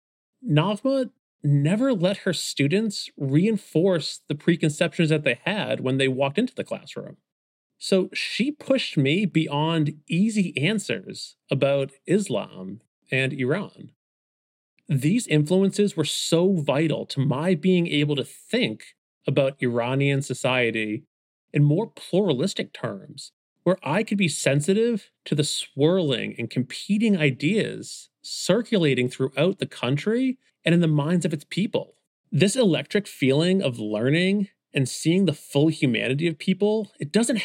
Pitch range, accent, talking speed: 140-190 Hz, American, 130 wpm